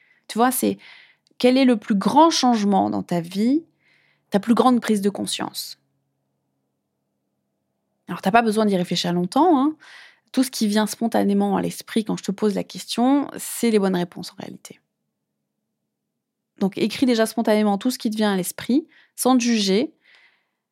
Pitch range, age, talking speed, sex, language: 175-235 Hz, 20-39, 175 wpm, female, French